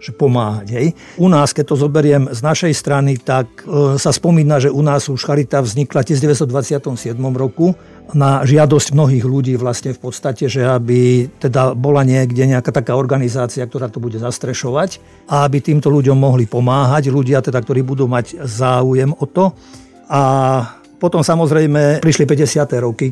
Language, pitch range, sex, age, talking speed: Slovak, 130-145 Hz, male, 50-69, 160 wpm